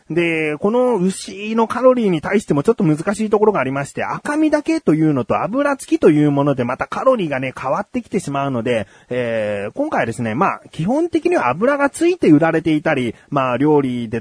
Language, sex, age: Japanese, male, 30-49